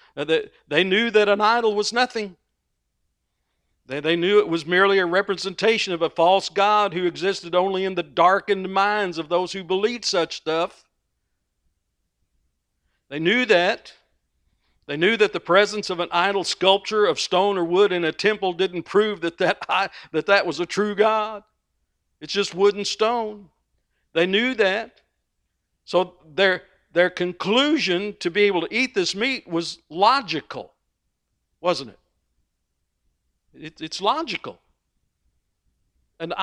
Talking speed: 150 wpm